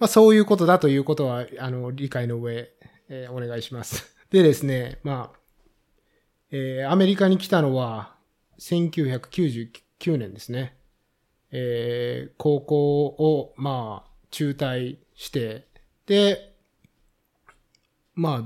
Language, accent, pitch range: Japanese, native, 120-150 Hz